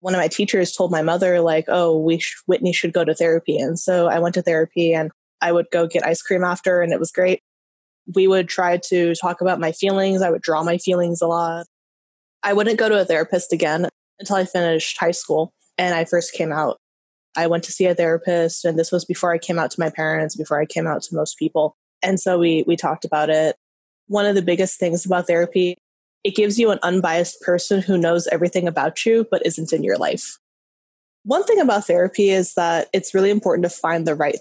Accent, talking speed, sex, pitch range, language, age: American, 230 wpm, female, 165-190 Hz, English, 20-39